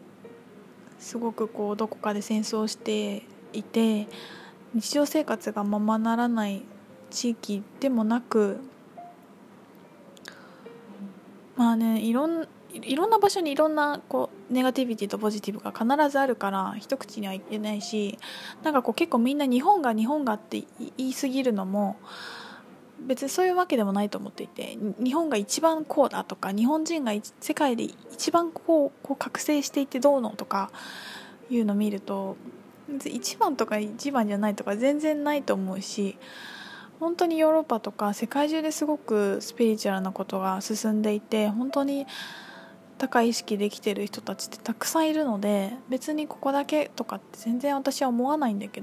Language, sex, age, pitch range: Japanese, female, 20-39, 210-285 Hz